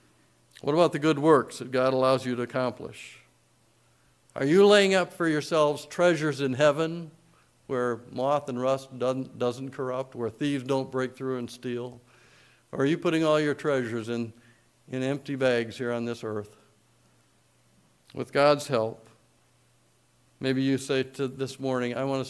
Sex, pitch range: male, 120-145 Hz